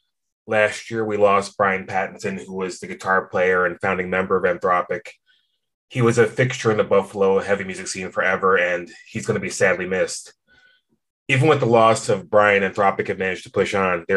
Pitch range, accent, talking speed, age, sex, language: 100-130 Hz, American, 200 wpm, 20-39, male, English